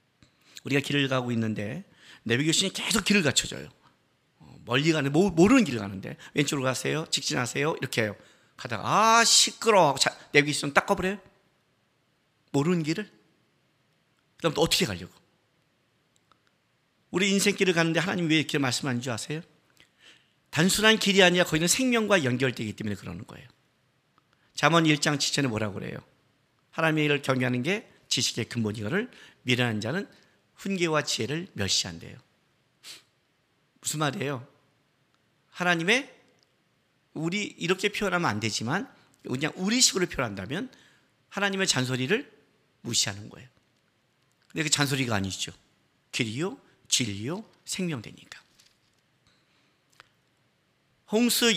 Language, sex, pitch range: Korean, male, 125-185 Hz